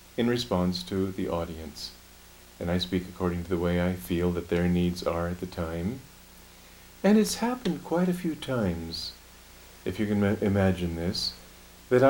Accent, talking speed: American, 170 wpm